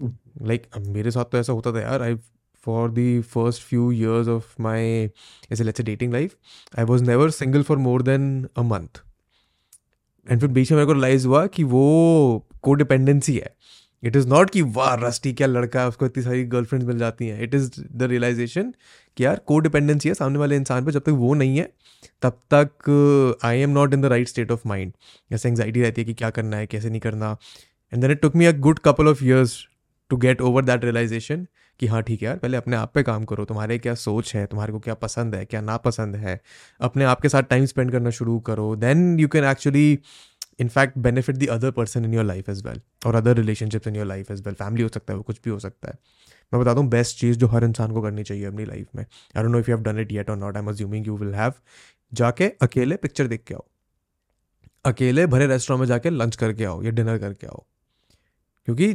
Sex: male